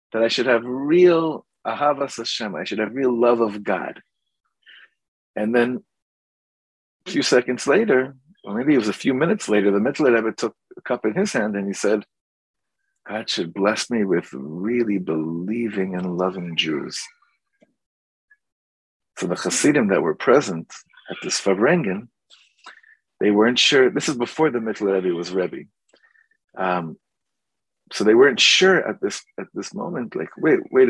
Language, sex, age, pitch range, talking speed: English, male, 50-69, 100-155 Hz, 160 wpm